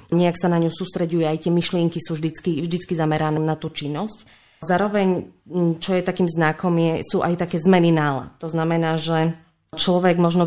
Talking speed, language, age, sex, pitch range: 170 wpm, Slovak, 20-39, female, 150-170 Hz